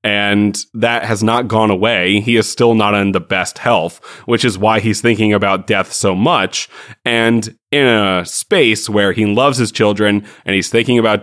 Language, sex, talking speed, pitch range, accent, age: English, male, 190 wpm, 100-115 Hz, American, 30-49